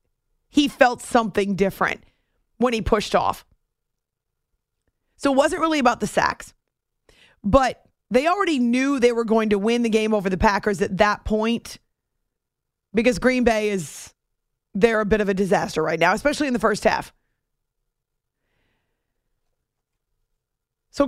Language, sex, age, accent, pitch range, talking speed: English, female, 30-49, American, 205-260 Hz, 140 wpm